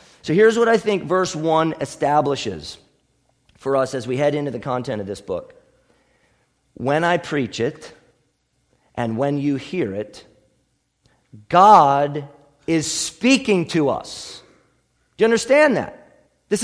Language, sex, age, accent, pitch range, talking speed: English, male, 40-59, American, 145-220 Hz, 135 wpm